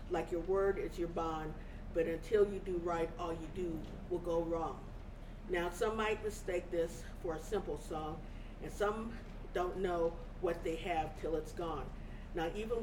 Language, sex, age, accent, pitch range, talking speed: English, female, 50-69, American, 165-200 Hz, 180 wpm